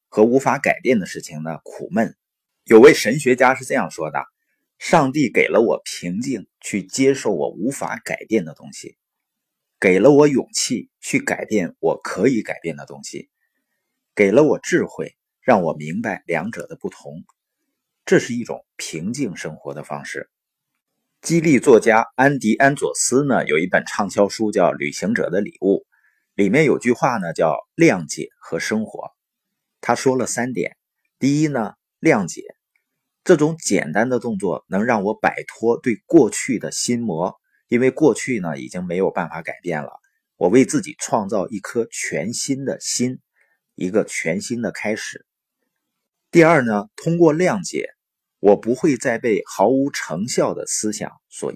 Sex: male